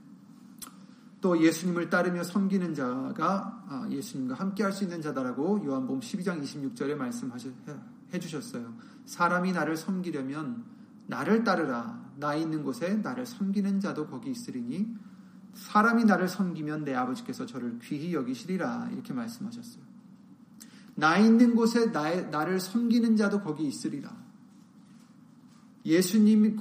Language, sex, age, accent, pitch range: Korean, male, 40-59, native, 190-235 Hz